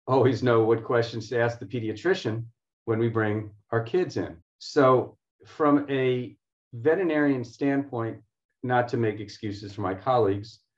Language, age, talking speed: English, 40-59, 145 wpm